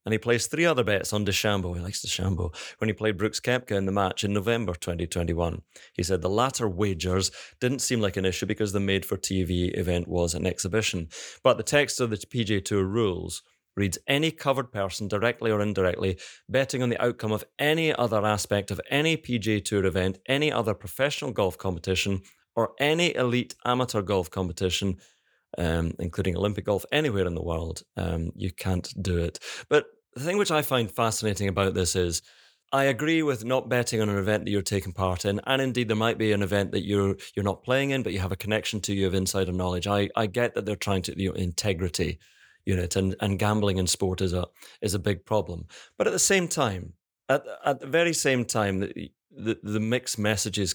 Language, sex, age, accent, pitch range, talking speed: English, male, 30-49, British, 95-120 Hz, 210 wpm